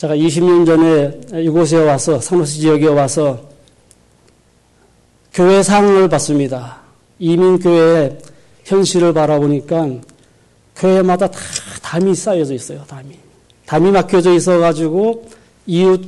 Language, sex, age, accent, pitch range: Korean, male, 40-59, native, 145-175 Hz